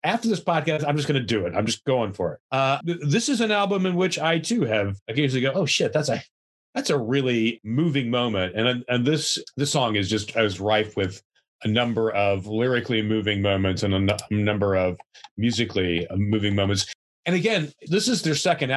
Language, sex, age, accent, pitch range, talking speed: English, male, 30-49, American, 110-145 Hz, 210 wpm